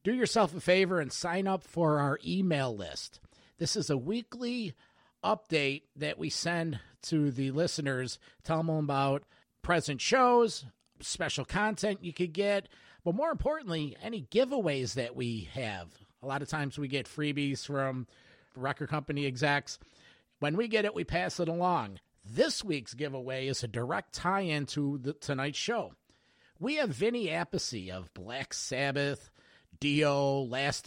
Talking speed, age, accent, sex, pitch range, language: 155 wpm, 50-69, American, male, 135-175 Hz, English